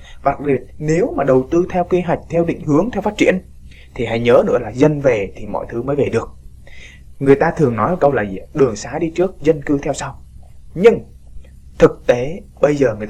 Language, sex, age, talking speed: Vietnamese, male, 20-39, 220 wpm